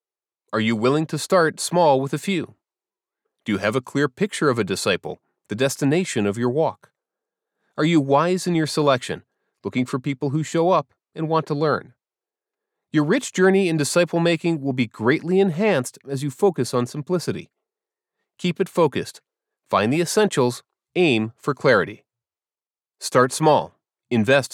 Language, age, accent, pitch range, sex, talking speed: English, 30-49, American, 140-195 Hz, male, 160 wpm